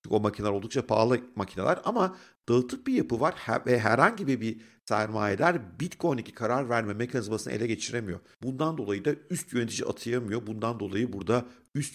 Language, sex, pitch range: Turkish, male, 105-150 Hz